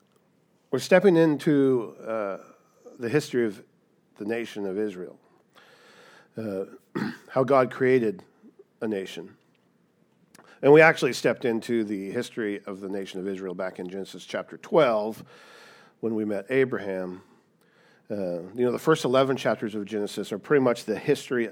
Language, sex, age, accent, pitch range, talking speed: English, male, 50-69, American, 105-135 Hz, 145 wpm